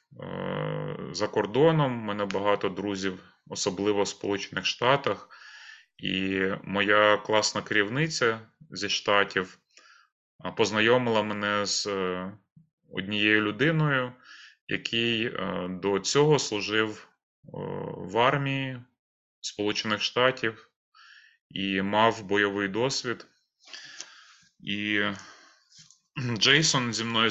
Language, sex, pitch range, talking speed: Ukrainian, male, 100-130 Hz, 80 wpm